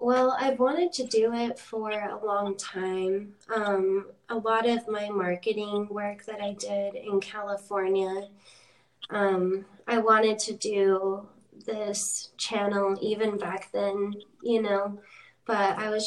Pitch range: 195-220 Hz